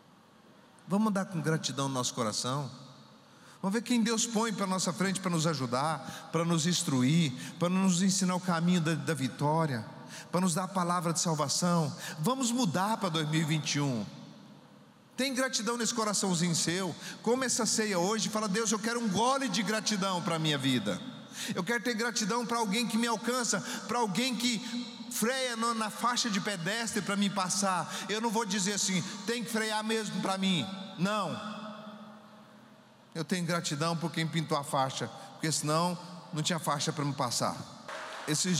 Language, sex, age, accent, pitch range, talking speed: Portuguese, male, 40-59, Brazilian, 160-215 Hz, 175 wpm